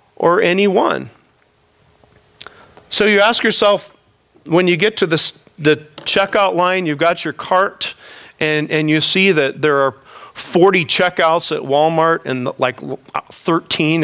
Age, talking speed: 40-59, 135 wpm